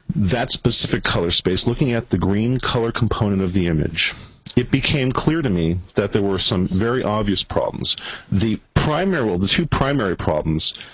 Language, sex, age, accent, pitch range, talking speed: English, male, 40-59, American, 95-120 Hz, 175 wpm